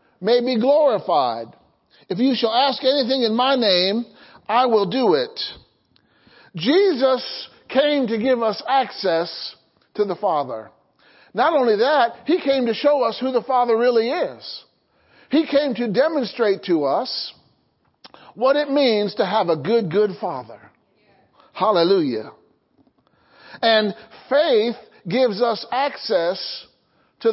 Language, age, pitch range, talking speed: English, 50-69, 210-270 Hz, 130 wpm